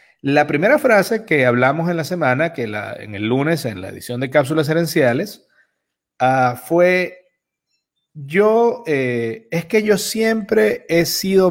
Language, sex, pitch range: Spanish, male, 130-190 Hz